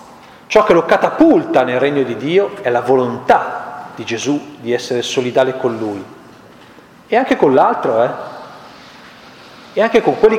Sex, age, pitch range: male, 40-59, 130-195 Hz